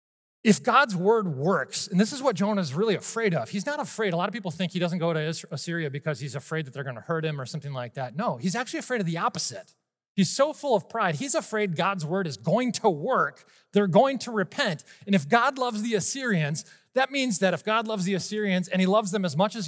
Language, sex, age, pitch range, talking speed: English, male, 30-49, 150-205 Hz, 255 wpm